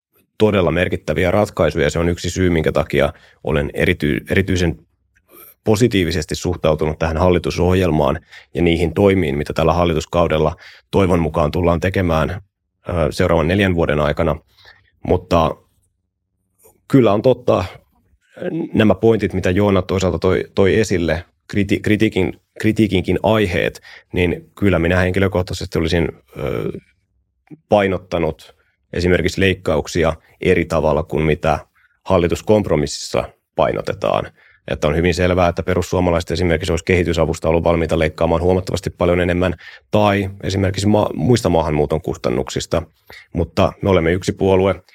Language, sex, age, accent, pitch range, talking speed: Finnish, male, 30-49, native, 80-95 Hz, 110 wpm